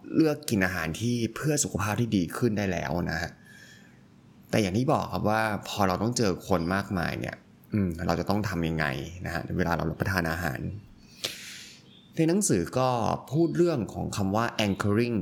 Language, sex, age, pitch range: Thai, male, 20-39, 90-120 Hz